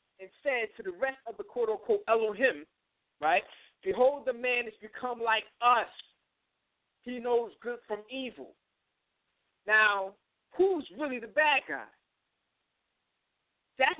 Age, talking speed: 50-69, 130 wpm